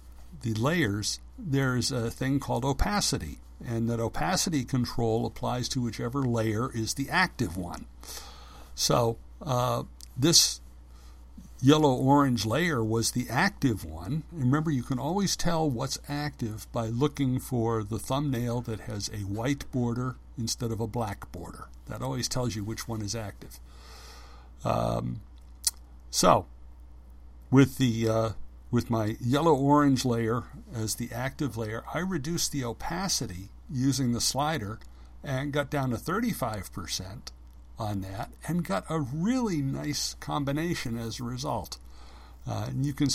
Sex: male